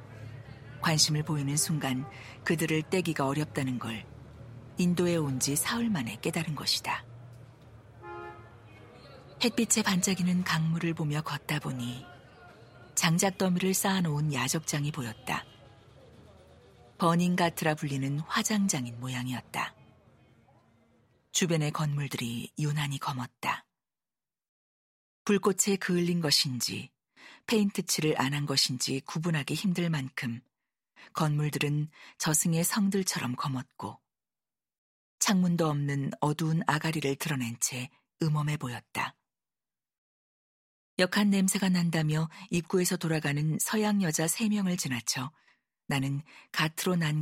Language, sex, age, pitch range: Korean, female, 40-59, 130-175 Hz